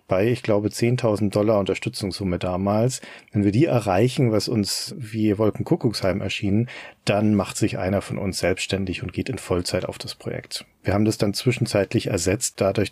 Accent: German